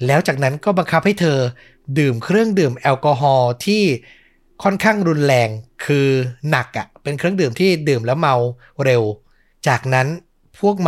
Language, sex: Thai, male